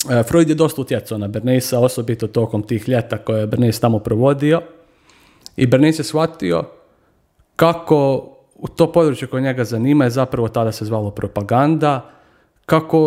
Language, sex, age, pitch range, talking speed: Croatian, male, 40-59, 115-145 Hz, 145 wpm